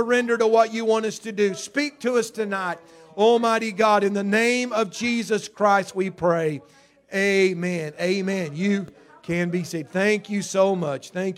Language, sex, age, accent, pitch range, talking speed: English, male, 40-59, American, 155-200 Hz, 180 wpm